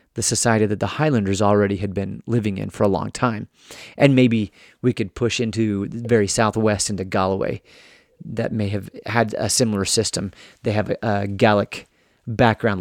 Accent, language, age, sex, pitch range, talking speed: American, English, 30-49, male, 105-125 Hz, 175 wpm